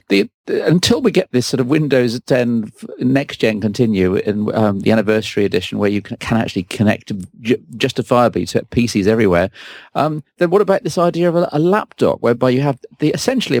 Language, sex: English, male